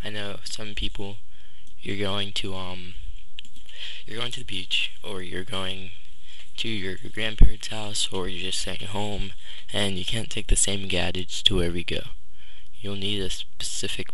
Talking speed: 170 wpm